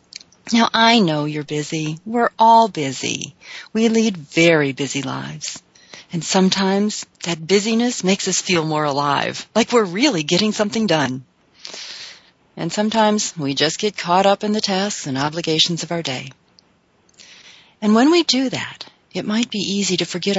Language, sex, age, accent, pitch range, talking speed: English, female, 40-59, American, 150-210 Hz, 160 wpm